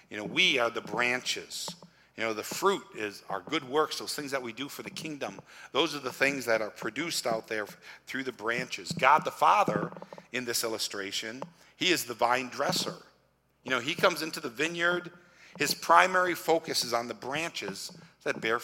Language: English